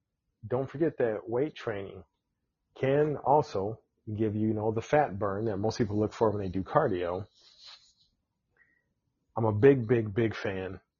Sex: male